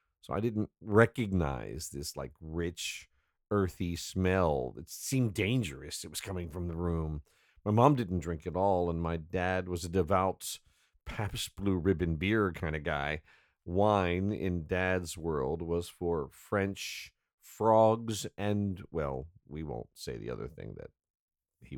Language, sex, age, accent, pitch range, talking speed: English, male, 50-69, American, 80-105 Hz, 150 wpm